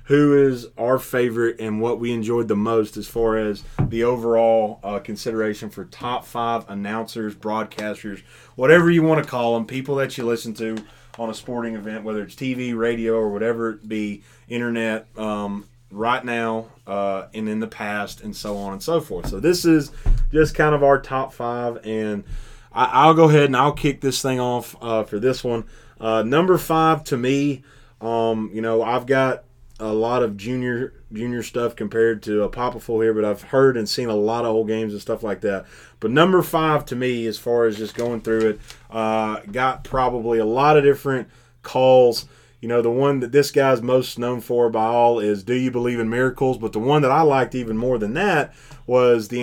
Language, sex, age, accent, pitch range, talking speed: English, male, 30-49, American, 110-130 Hz, 205 wpm